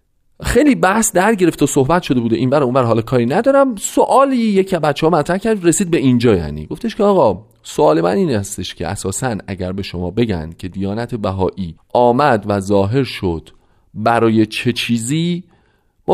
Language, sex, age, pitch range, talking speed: Persian, male, 40-59, 110-170 Hz, 180 wpm